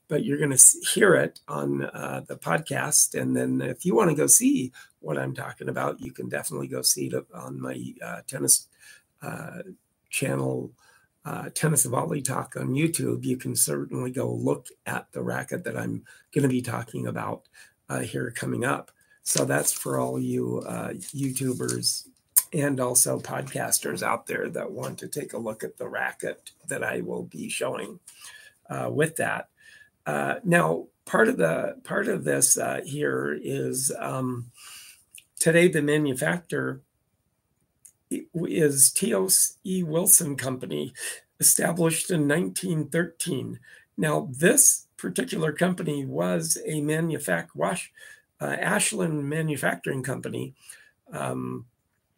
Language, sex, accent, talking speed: English, male, American, 145 wpm